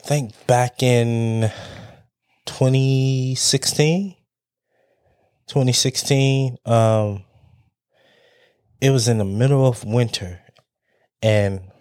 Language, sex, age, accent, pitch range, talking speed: English, male, 20-39, American, 105-135 Hz, 75 wpm